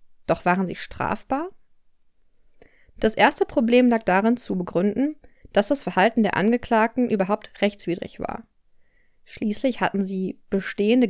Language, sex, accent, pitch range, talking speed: German, female, German, 195-250 Hz, 125 wpm